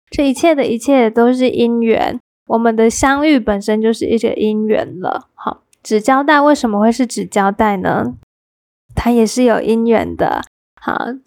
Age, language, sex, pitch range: 10-29, Chinese, female, 215-255 Hz